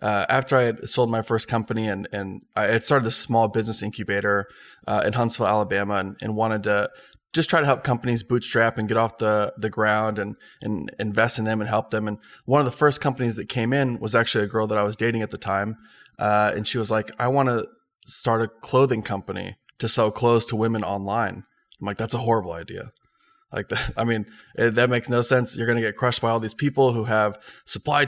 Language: English